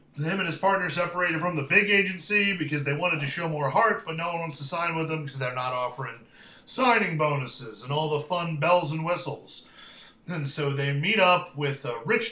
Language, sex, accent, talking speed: English, male, American, 220 wpm